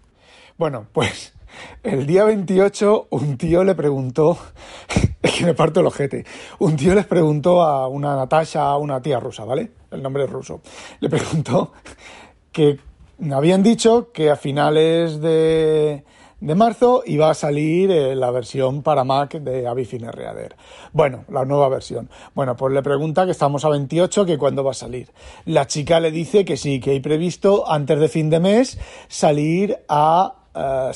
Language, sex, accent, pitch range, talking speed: Spanish, male, Spanish, 140-190 Hz, 165 wpm